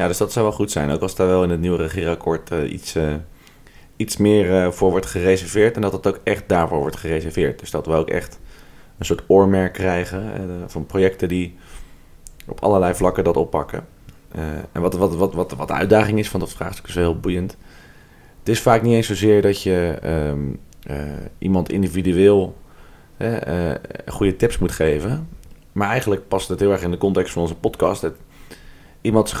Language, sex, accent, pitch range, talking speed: Dutch, male, Dutch, 85-100 Hz, 200 wpm